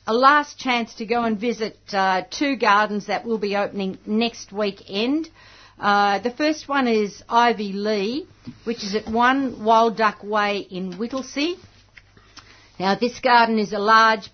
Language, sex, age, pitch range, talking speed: English, female, 50-69, 200-240 Hz, 160 wpm